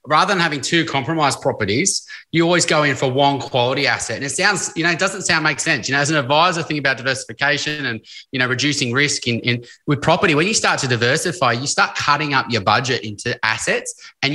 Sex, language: male, English